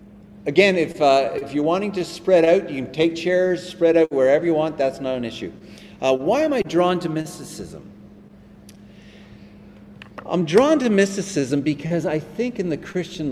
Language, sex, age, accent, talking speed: English, male, 50-69, American, 175 wpm